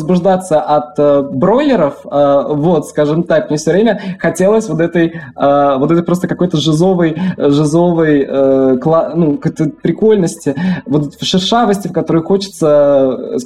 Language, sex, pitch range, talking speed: Russian, male, 155-205 Hz, 110 wpm